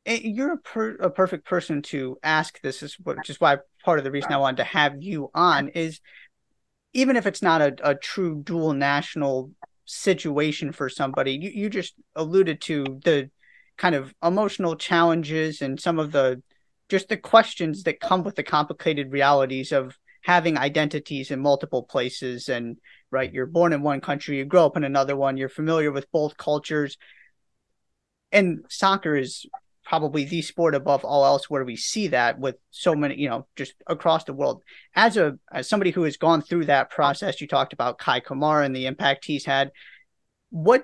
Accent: American